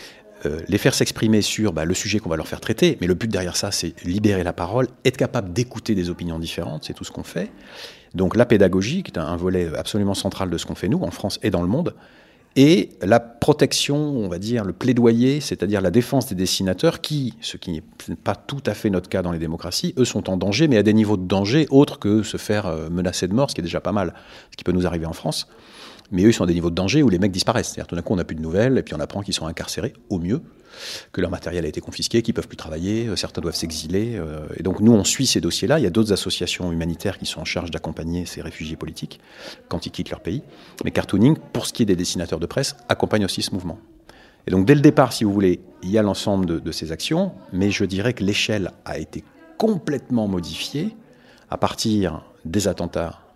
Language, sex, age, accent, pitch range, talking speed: French, male, 40-59, French, 85-115 Hz, 250 wpm